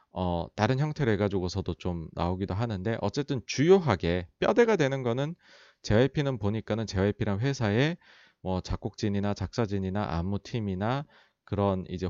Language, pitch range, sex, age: Korean, 95-130 Hz, male, 40-59